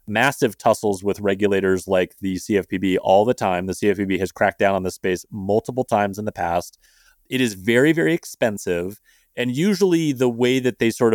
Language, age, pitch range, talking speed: English, 30-49, 100-130 Hz, 190 wpm